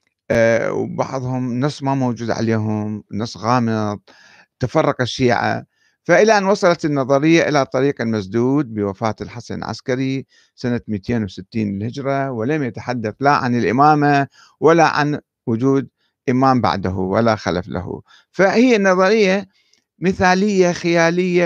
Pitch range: 115-165 Hz